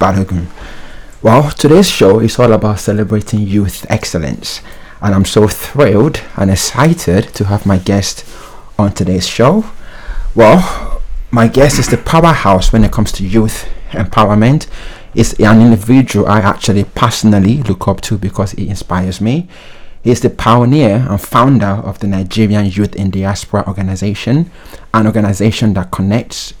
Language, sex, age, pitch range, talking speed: English, male, 30-49, 95-115 Hz, 140 wpm